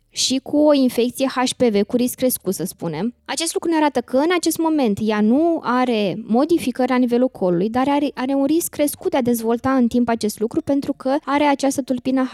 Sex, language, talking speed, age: female, Romanian, 210 wpm, 20-39